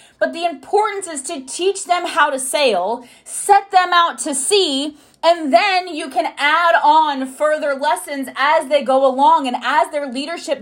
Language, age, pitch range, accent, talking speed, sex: English, 20-39, 260-345 Hz, American, 175 wpm, female